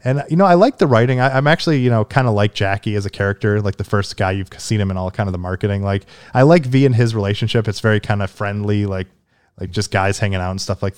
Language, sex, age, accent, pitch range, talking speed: English, male, 20-39, American, 100-140 Hz, 285 wpm